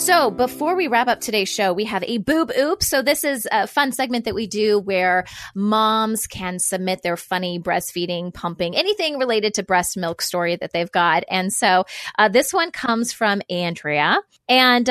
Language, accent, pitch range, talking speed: English, American, 185-245 Hz, 190 wpm